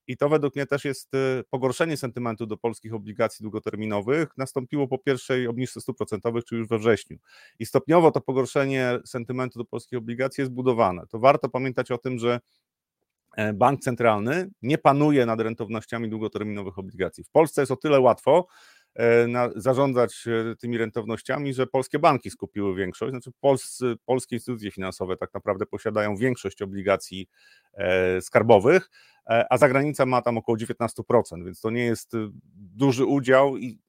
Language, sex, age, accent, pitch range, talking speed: Polish, male, 30-49, native, 110-135 Hz, 150 wpm